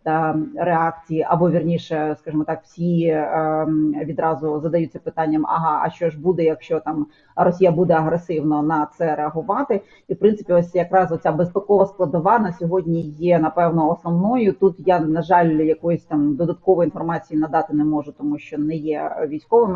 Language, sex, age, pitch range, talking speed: Ukrainian, female, 30-49, 155-180 Hz, 155 wpm